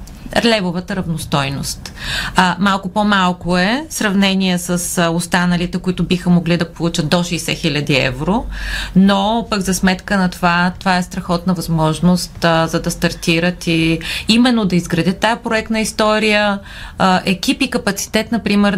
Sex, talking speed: female, 145 wpm